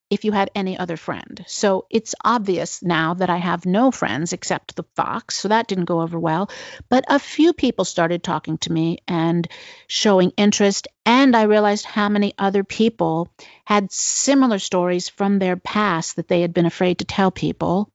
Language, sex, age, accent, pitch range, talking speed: English, female, 50-69, American, 175-220 Hz, 185 wpm